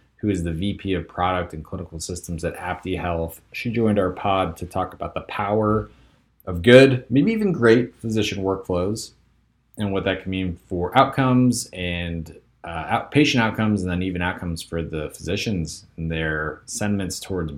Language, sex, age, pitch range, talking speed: English, male, 30-49, 85-110 Hz, 170 wpm